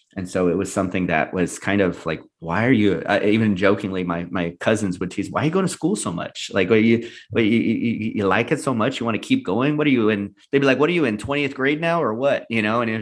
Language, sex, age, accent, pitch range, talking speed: English, male, 30-49, American, 90-115 Hz, 295 wpm